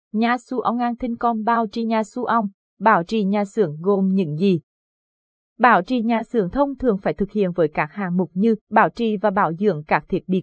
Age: 20-39